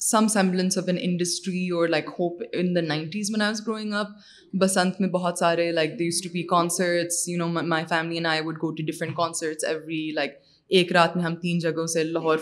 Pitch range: 160-180 Hz